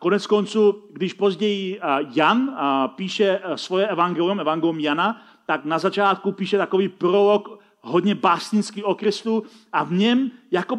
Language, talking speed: Czech, 130 wpm